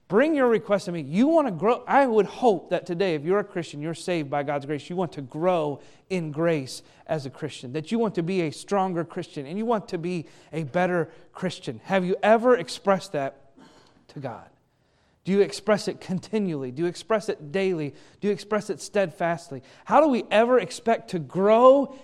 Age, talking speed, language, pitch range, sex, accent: 30-49, 210 wpm, English, 165-220 Hz, male, American